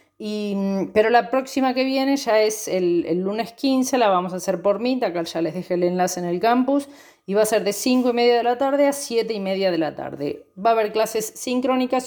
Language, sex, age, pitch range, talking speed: Spanish, female, 30-49, 185-245 Hz, 250 wpm